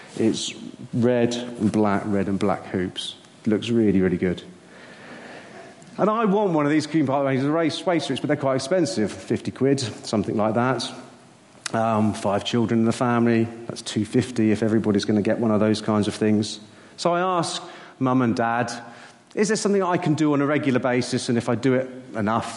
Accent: British